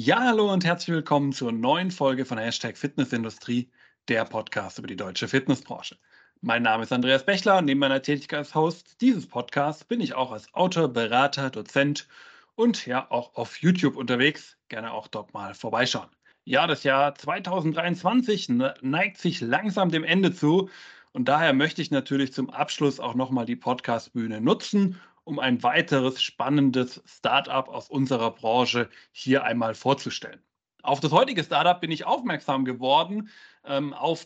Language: German